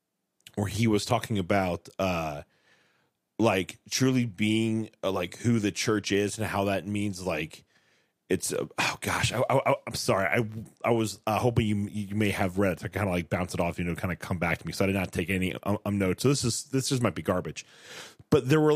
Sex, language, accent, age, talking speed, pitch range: male, English, American, 30-49, 235 wpm, 100-120 Hz